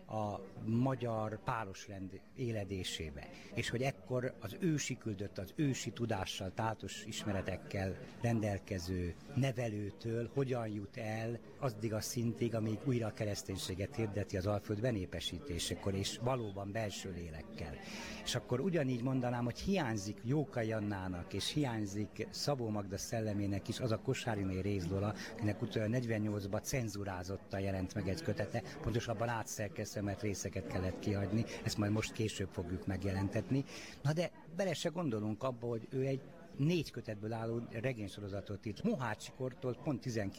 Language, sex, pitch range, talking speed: Hungarian, male, 100-125 Hz, 135 wpm